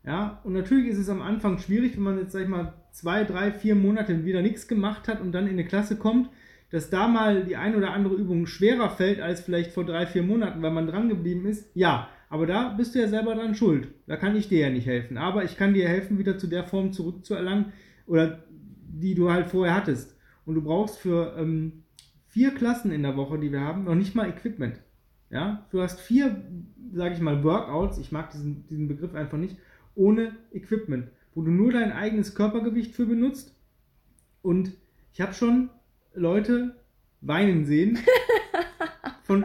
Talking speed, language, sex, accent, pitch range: 200 wpm, German, male, German, 170-220 Hz